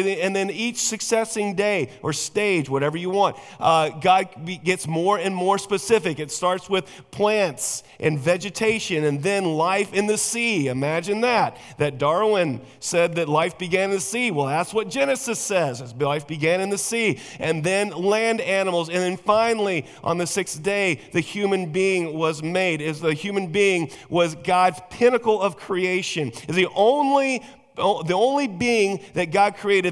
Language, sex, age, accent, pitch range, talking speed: English, male, 40-59, American, 170-205 Hz, 170 wpm